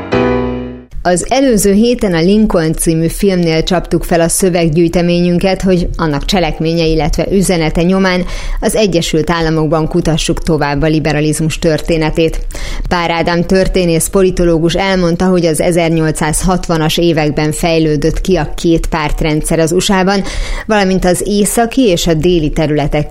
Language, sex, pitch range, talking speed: Hungarian, female, 160-190 Hz, 120 wpm